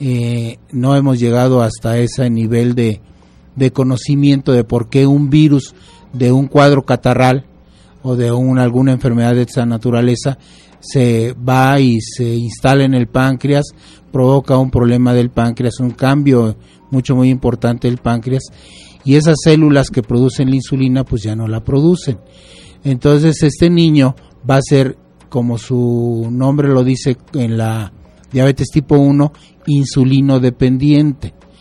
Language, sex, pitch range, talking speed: Spanish, male, 120-140 Hz, 145 wpm